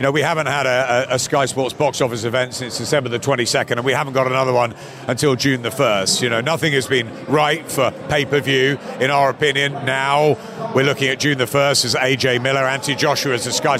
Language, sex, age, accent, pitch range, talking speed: English, male, 50-69, British, 130-150 Hz, 230 wpm